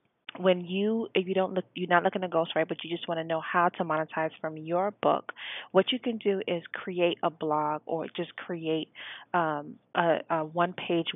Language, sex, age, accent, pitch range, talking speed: English, female, 30-49, American, 155-185 Hz, 210 wpm